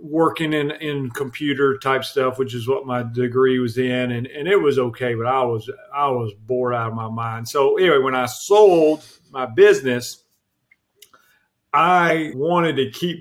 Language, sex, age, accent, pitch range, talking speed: English, male, 40-59, American, 125-155 Hz, 175 wpm